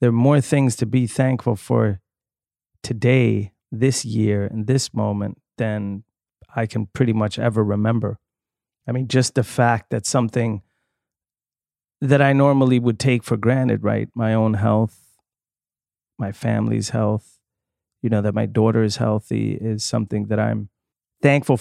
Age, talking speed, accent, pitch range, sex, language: 30-49, 150 wpm, American, 105-125 Hz, male, English